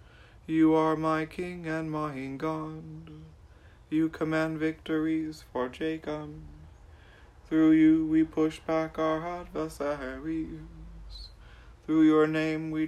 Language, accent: English, American